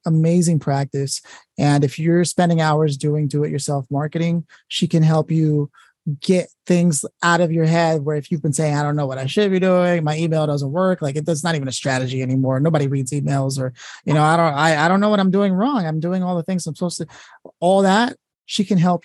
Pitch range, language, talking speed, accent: 150-175 Hz, English, 230 wpm, American